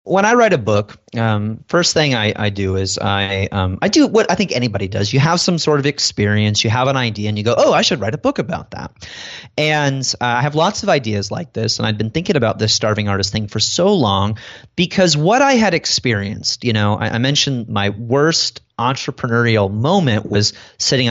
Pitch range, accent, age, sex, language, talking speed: 105-140 Hz, American, 30-49, male, English, 225 wpm